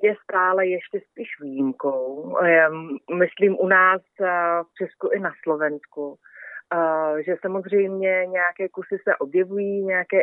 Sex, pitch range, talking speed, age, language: female, 165-185 Hz, 115 wpm, 30-49, Slovak